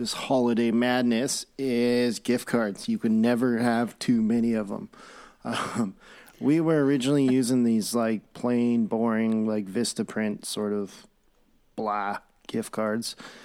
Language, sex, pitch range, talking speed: English, male, 110-130 Hz, 140 wpm